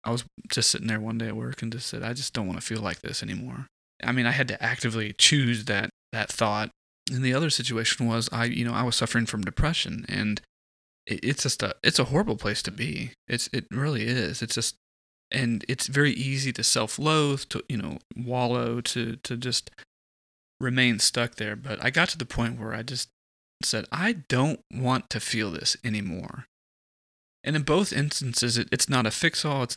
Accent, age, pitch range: American, 20-39, 110-130 Hz